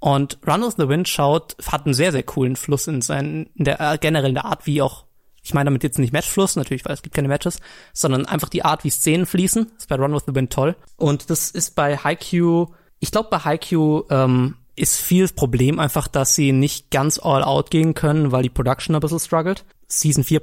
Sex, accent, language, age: male, German, German, 20-39